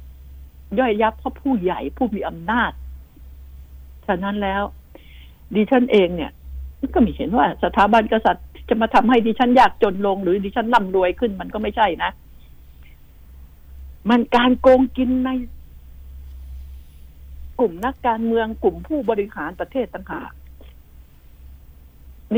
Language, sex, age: Thai, female, 60-79